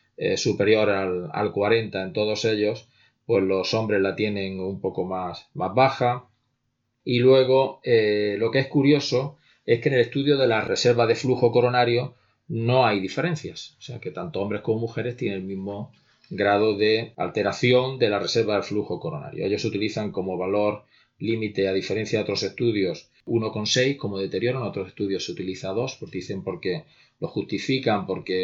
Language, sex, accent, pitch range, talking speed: Spanish, male, Spanish, 100-120 Hz, 175 wpm